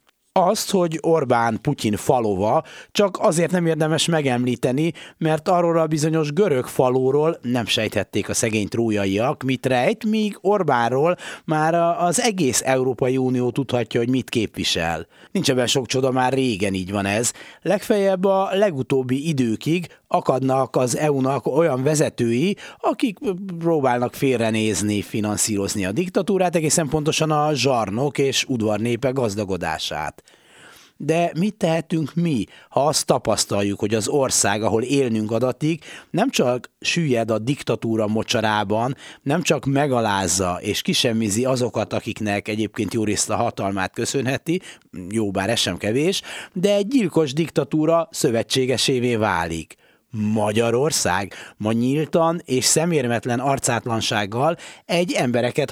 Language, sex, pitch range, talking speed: Hungarian, male, 110-160 Hz, 125 wpm